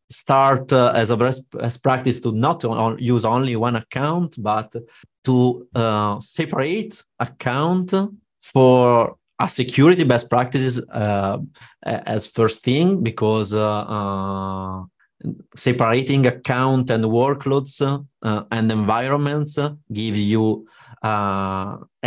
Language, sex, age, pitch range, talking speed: English, male, 30-49, 105-130 Hz, 105 wpm